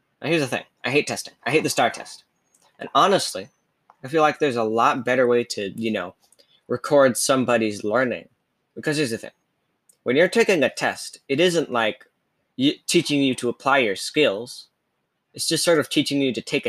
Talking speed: 195 wpm